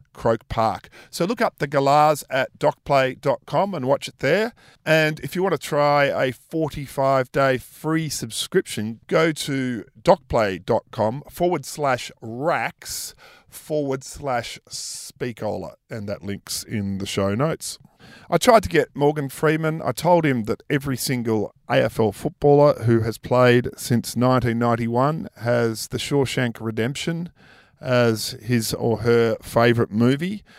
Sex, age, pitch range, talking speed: male, 50-69, 110-145 Hz, 135 wpm